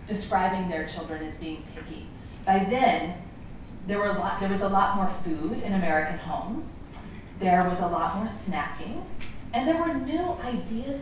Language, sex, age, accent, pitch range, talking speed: English, female, 30-49, American, 185-245 Hz, 175 wpm